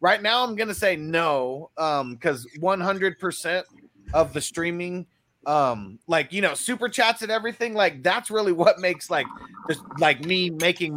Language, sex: English, male